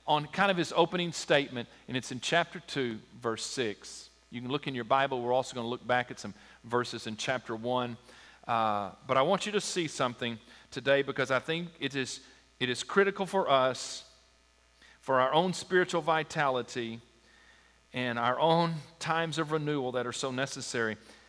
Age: 40-59